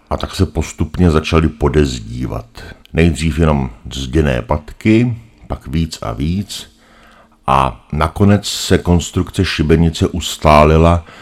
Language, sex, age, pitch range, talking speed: Czech, male, 60-79, 75-85 Hz, 105 wpm